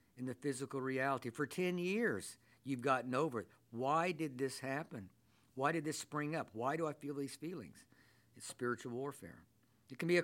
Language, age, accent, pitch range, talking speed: English, 50-69, American, 125-155 Hz, 195 wpm